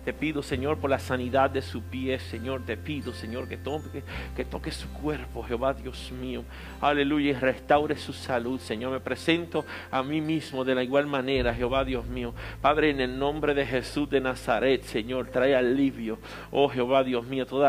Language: English